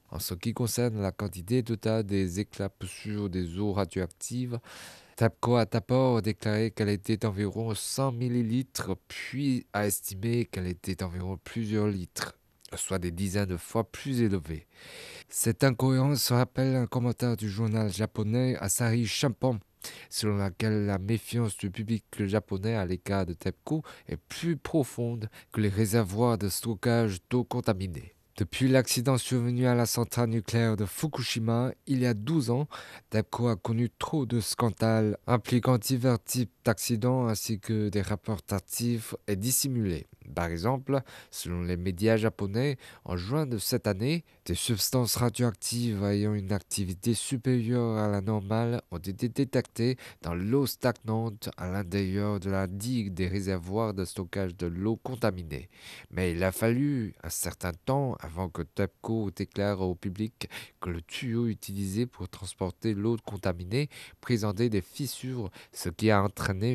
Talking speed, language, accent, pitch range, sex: 150 wpm, French, French, 95-120 Hz, male